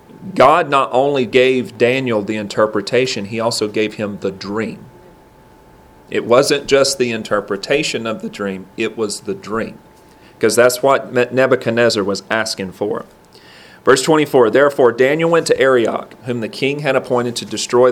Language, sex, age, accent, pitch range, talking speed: English, male, 40-59, American, 110-130 Hz, 155 wpm